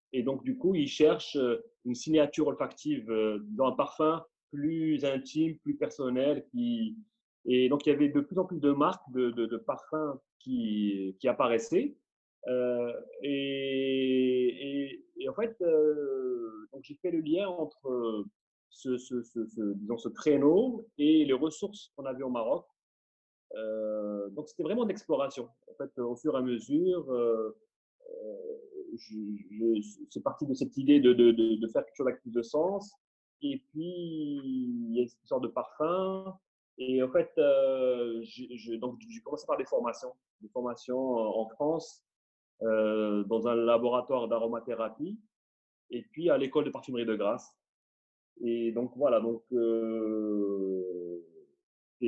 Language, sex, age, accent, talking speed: French, male, 30-49, French, 155 wpm